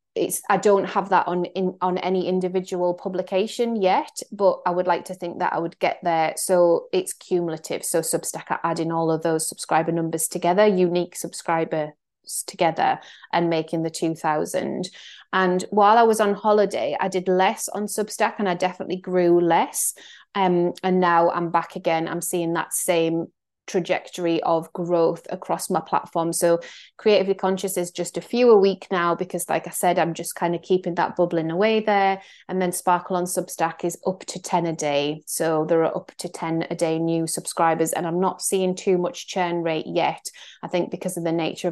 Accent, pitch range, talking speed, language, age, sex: British, 165-190 Hz, 195 wpm, English, 20-39, female